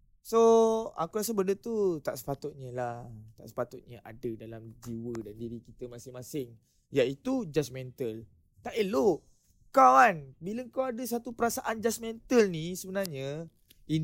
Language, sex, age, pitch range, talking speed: Malay, male, 20-39, 130-210 Hz, 135 wpm